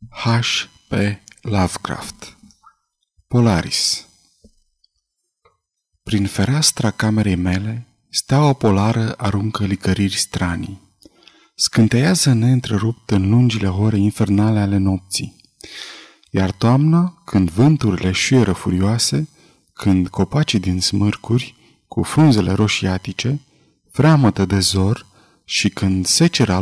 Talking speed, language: 90 wpm, Romanian